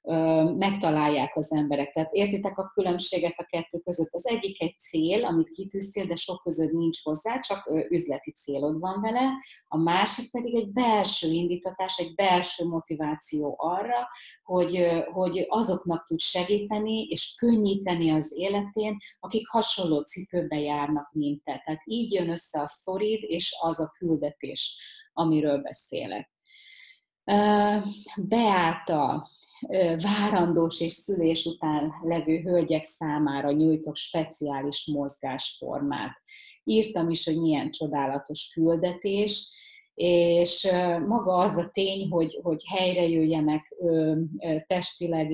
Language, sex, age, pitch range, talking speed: Hungarian, female, 30-49, 155-195 Hz, 115 wpm